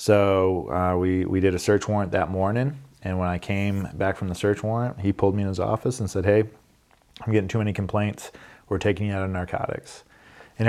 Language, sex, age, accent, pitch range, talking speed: English, male, 20-39, American, 95-110 Hz, 225 wpm